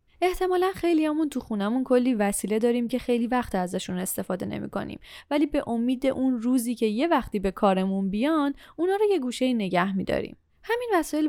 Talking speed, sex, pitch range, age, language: 175 wpm, female, 210-295 Hz, 10-29, Persian